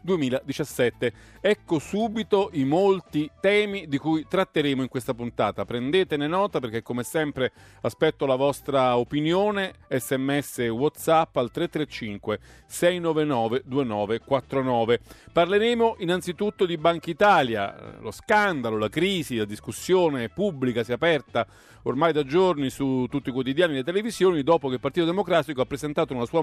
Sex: male